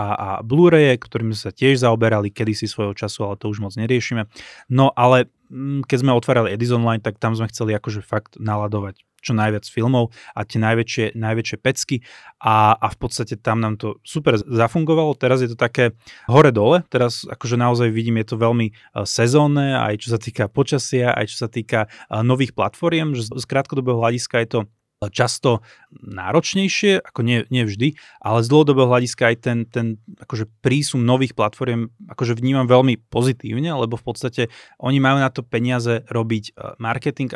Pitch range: 110-130 Hz